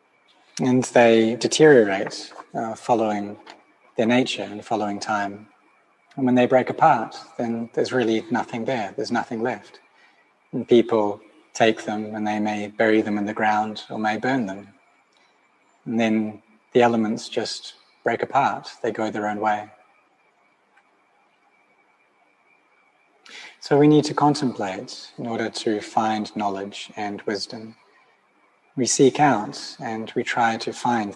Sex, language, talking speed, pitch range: male, English, 135 wpm, 105-125 Hz